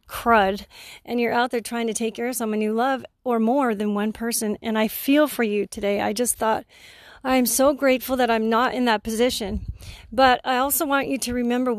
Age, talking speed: 40-59, 220 wpm